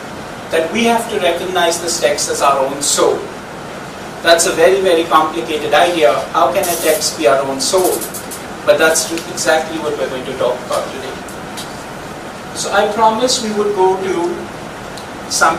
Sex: male